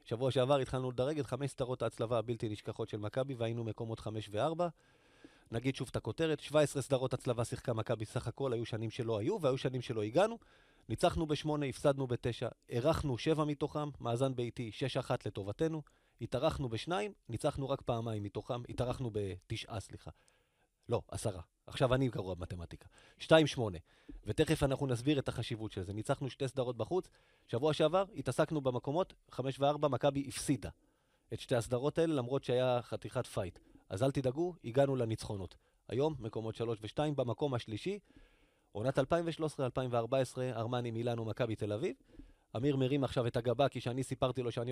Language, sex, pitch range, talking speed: Hebrew, male, 115-150 Hz, 160 wpm